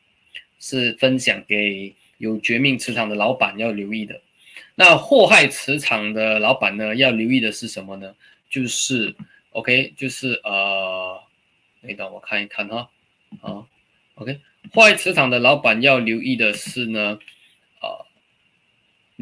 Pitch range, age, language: 110-145 Hz, 20-39, Chinese